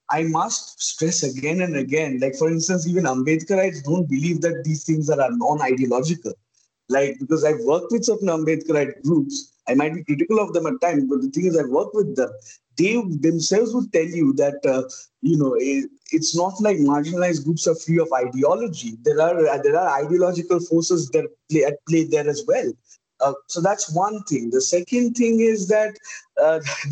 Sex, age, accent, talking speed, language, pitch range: male, 20-39, Indian, 190 wpm, English, 150-185 Hz